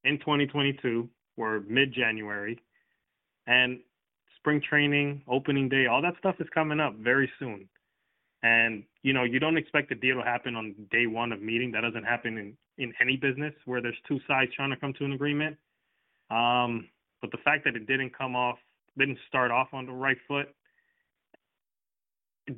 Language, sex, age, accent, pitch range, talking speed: English, male, 20-39, American, 120-145 Hz, 175 wpm